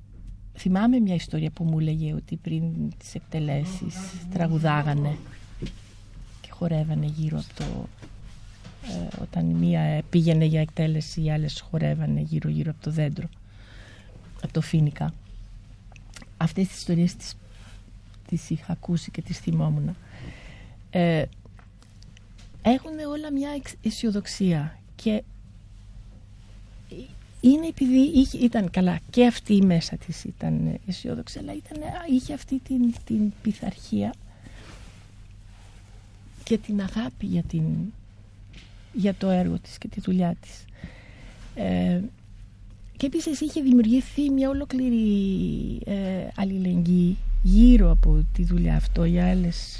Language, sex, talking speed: Greek, female, 115 wpm